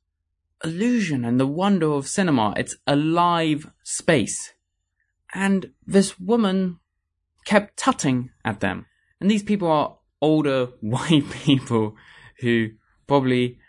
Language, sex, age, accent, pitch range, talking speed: English, male, 20-39, British, 110-165 Hz, 115 wpm